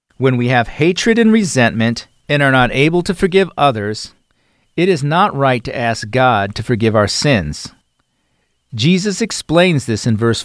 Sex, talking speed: male, 165 wpm